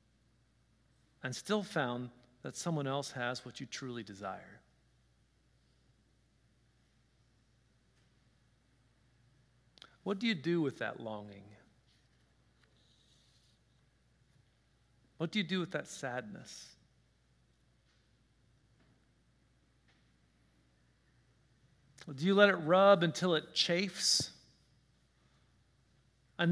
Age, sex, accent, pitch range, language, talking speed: 40-59, male, American, 120-165 Hz, English, 75 wpm